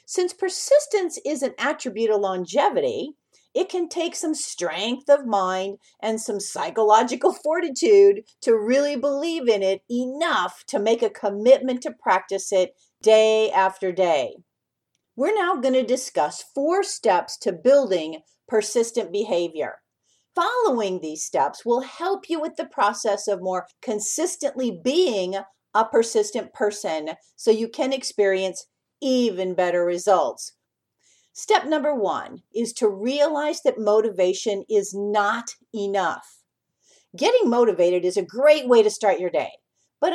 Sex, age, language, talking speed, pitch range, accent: female, 50-69, English, 135 wpm, 200-310 Hz, American